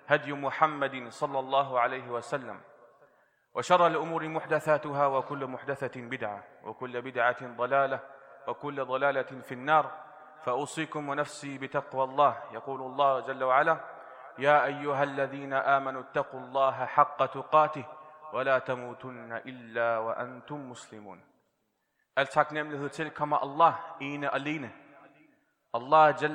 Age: 30-49